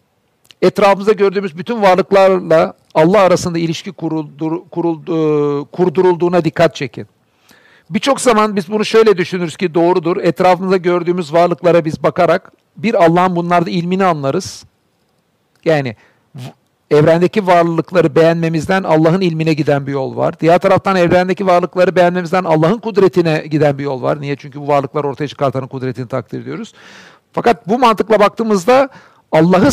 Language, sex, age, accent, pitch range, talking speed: Turkish, male, 50-69, native, 155-195 Hz, 130 wpm